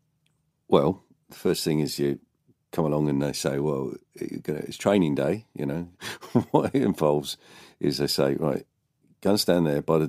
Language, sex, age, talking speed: English, male, 50-69, 180 wpm